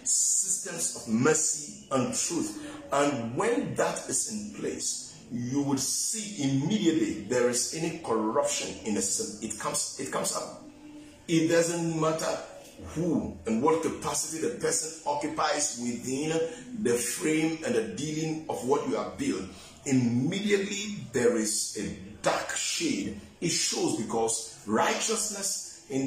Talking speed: 135 wpm